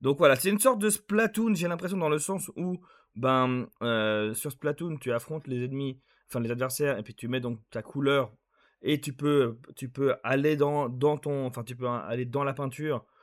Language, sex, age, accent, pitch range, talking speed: French, male, 20-39, French, 115-145 Hz, 215 wpm